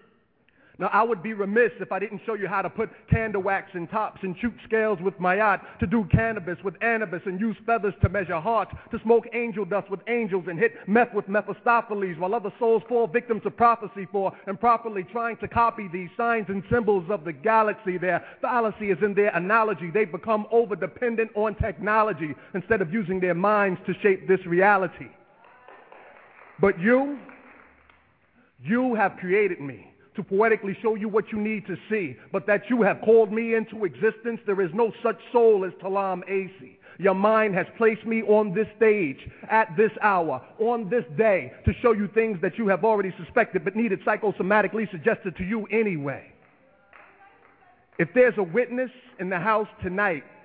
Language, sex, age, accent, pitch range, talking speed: English, male, 50-69, American, 195-225 Hz, 180 wpm